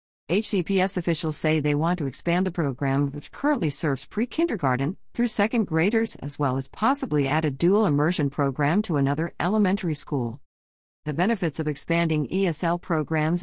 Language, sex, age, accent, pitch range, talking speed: English, female, 50-69, American, 140-190 Hz, 160 wpm